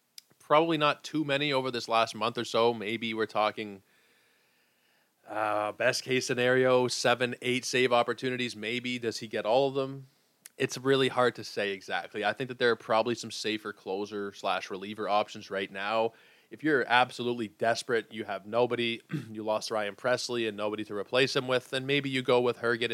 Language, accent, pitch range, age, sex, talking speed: English, American, 105-125 Hz, 20-39, male, 185 wpm